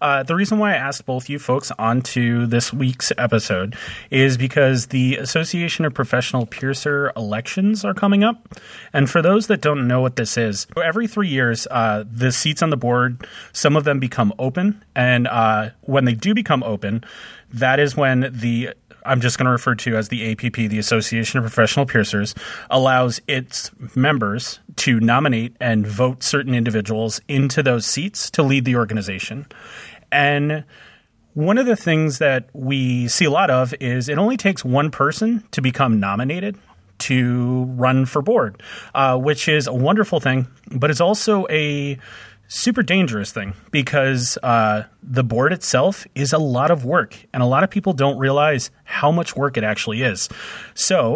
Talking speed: 175 wpm